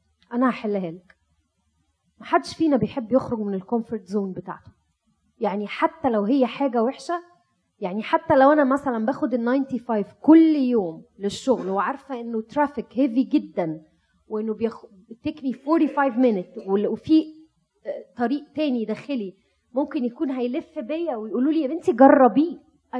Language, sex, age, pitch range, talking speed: Arabic, female, 20-39, 215-300 Hz, 140 wpm